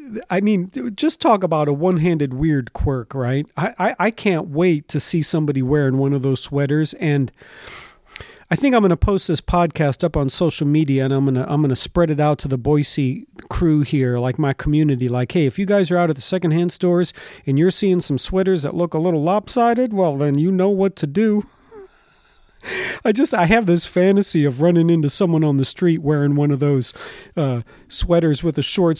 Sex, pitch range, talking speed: male, 145-185 Hz, 215 wpm